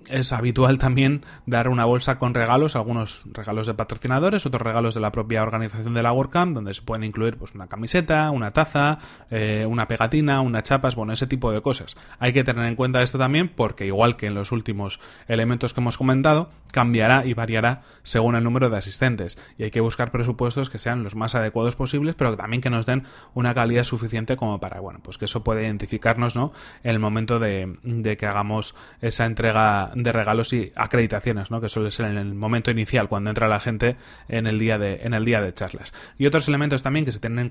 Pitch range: 110-125 Hz